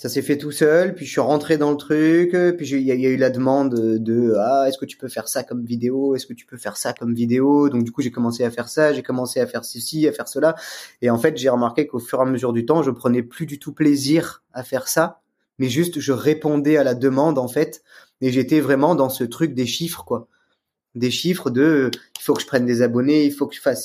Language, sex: French, male